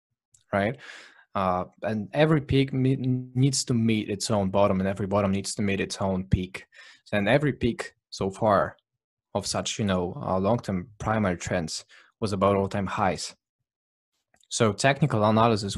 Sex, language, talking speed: male, English, 155 wpm